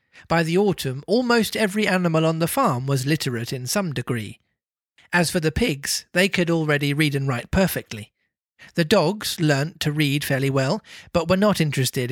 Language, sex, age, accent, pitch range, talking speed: English, male, 40-59, British, 135-180 Hz, 180 wpm